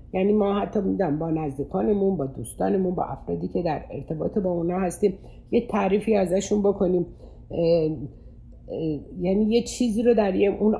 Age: 60-79